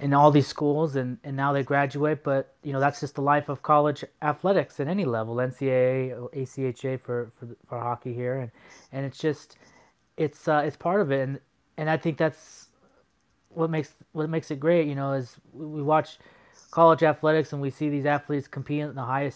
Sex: male